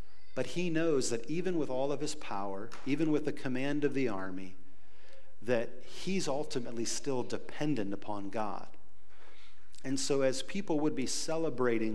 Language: English